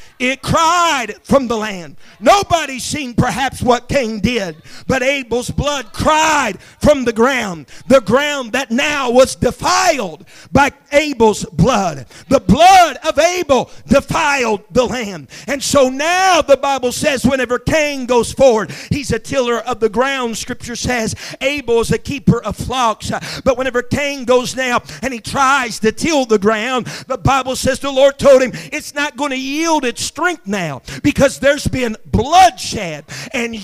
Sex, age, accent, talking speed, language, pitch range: male, 50-69, American, 160 wpm, English, 240-310 Hz